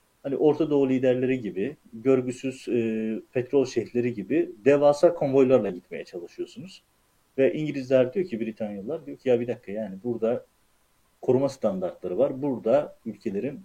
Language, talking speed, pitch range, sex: Turkish, 135 wpm, 115-135 Hz, male